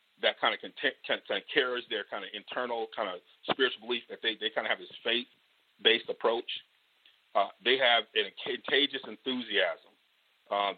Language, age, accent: English, 40-59, American